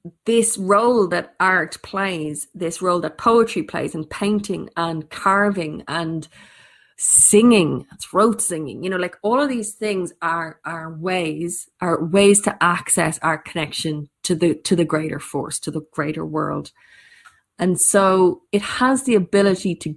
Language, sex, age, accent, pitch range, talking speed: English, female, 30-49, Irish, 160-195 Hz, 155 wpm